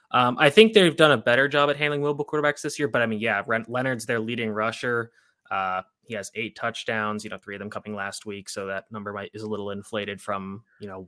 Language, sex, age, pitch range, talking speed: English, male, 20-39, 105-125 Hz, 255 wpm